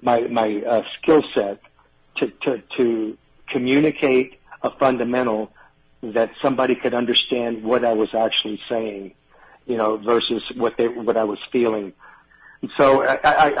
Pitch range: 115-135 Hz